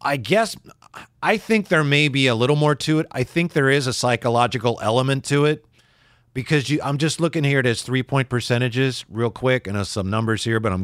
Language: English